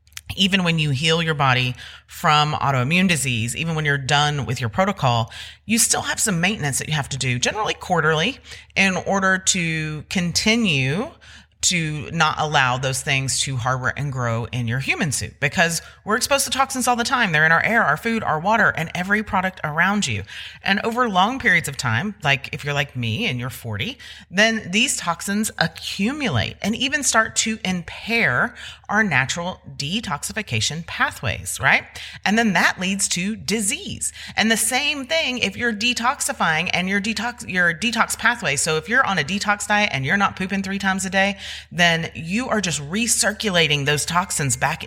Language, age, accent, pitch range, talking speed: English, 30-49, American, 130-200 Hz, 180 wpm